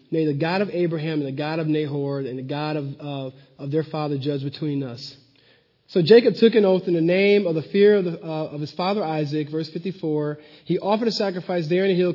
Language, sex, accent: English, male, American